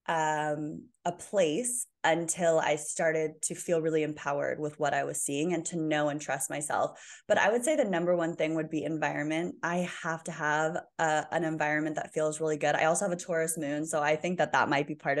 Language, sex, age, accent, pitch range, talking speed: English, female, 20-39, American, 155-175 Hz, 225 wpm